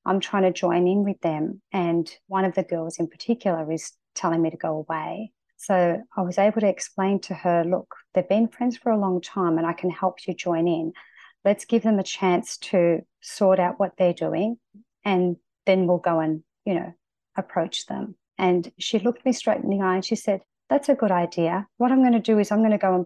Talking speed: 230 wpm